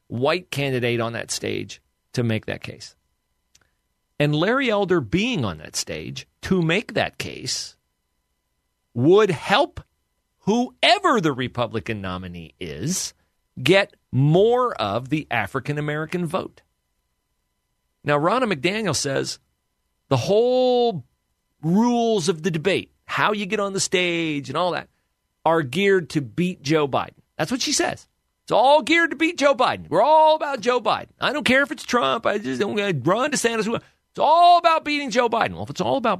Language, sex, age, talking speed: English, male, 40-59, 160 wpm